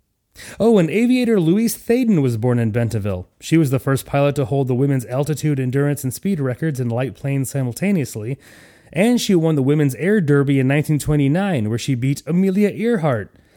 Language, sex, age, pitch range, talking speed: English, male, 30-49, 125-180 Hz, 180 wpm